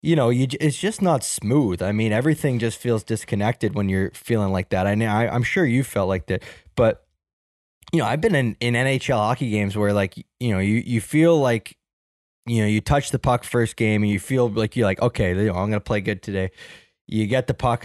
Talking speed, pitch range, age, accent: 250 wpm, 100-125 Hz, 20-39, American